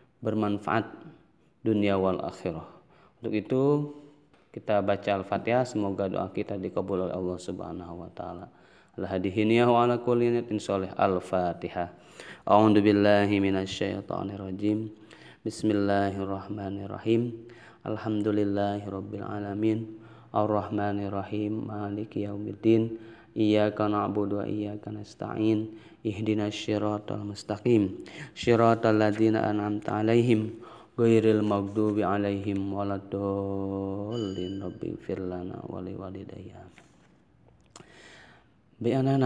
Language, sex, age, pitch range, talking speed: Indonesian, male, 20-39, 100-115 Hz, 85 wpm